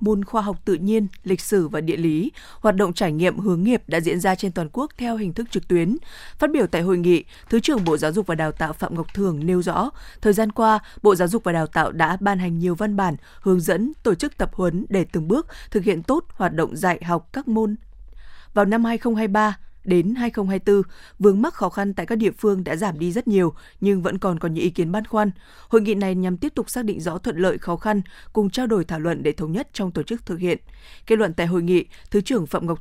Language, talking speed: Vietnamese, 255 wpm